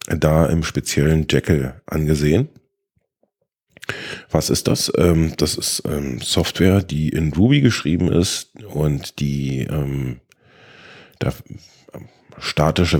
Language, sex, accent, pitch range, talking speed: German, male, German, 70-80 Hz, 90 wpm